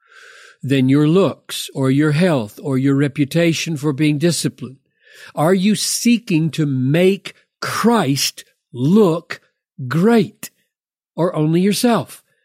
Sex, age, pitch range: male, 60-79, 145-220 Hz